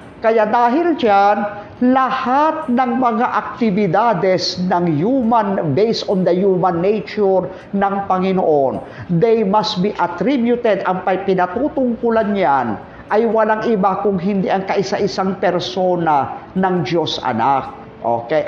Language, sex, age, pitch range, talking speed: Filipino, male, 50-69, 185-240 Hz, 115 wpm